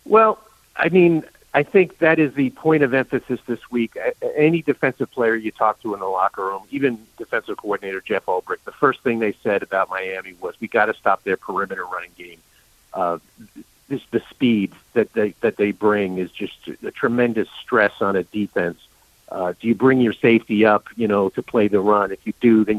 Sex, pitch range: male, 110-135 Hz